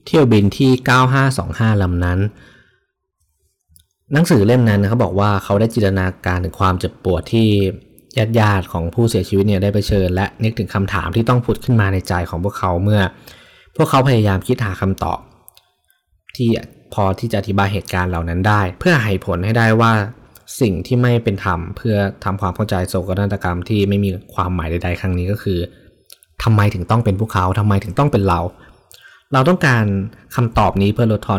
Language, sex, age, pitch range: Thai, male, 20-39, 95-115 Hz